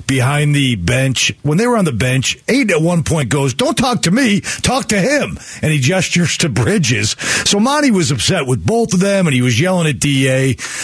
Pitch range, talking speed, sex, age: 125-180 Hz, 220 wpm, male, 40-59